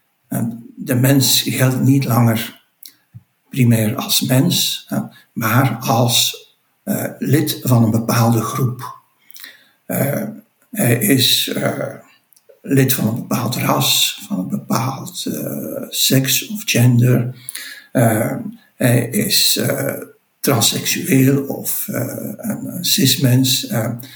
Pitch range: 120-140 Hz